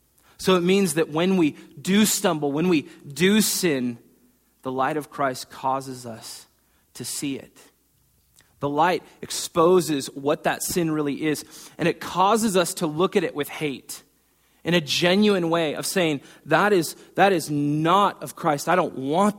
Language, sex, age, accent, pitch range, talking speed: English, male, 30-49, American, 150-190 Hz, 170 wpm